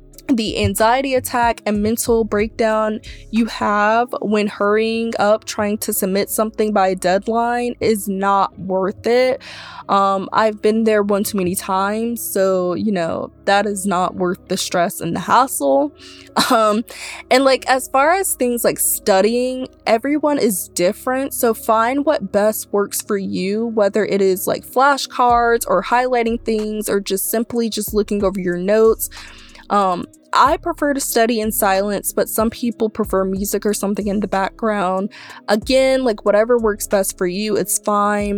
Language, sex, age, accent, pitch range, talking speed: English, female, 20-39, American, 200-240 Hz, 160 wpm